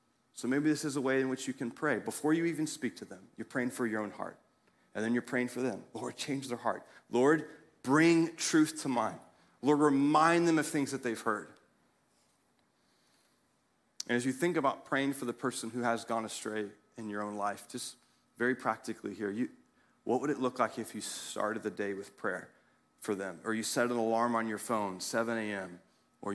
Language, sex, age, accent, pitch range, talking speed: English, male, 40-59, American, 110-145 Hz, 210 wpm